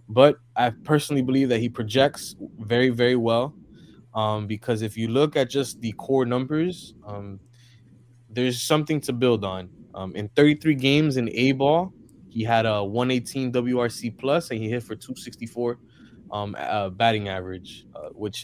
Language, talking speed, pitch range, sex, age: English, 165 wpm, 105-125 Hz, male, 20-39